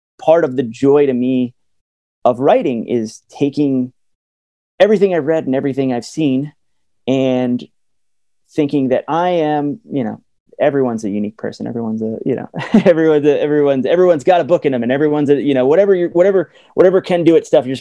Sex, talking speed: male, 185 wpm